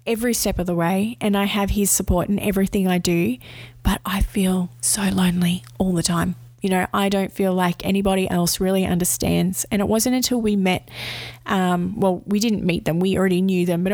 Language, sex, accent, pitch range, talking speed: English, female, Australian, 170-215 Hz, 210 wpm